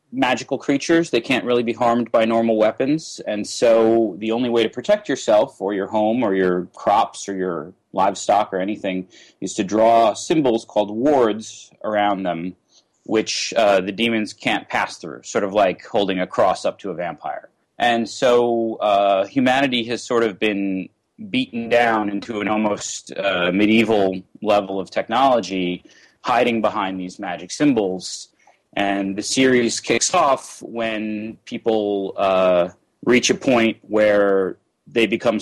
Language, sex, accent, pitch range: English, male, American, 100-115 Hz